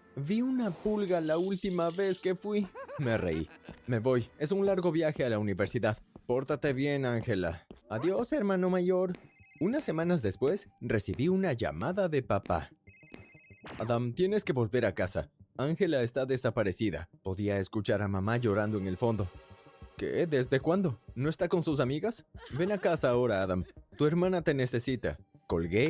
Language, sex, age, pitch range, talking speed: Spanish, male, 20-39, 100-165 Hz, 160 wpm